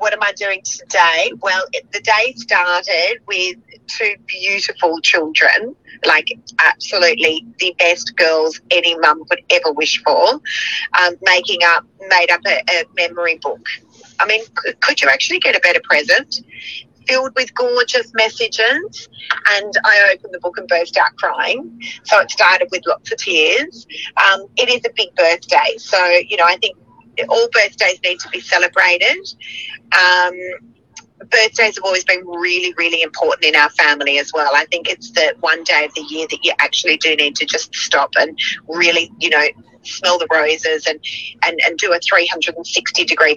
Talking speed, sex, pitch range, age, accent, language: 165 wpm, female, 165-235 Hz, 30-49, Australian, English